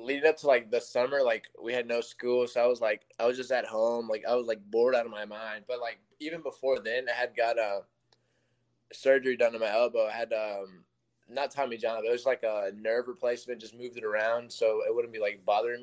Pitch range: 110-125 Hz